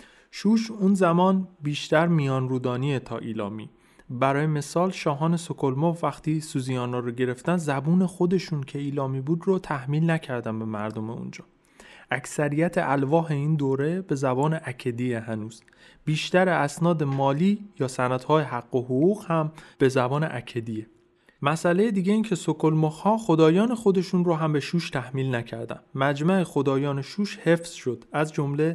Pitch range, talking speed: 125-165 Hz, 140 wpm